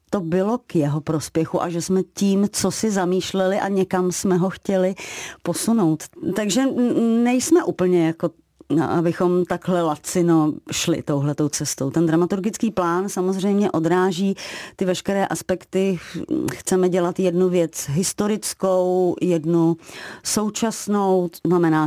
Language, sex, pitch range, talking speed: Czech, female, 170-190 Hz, 125 wpm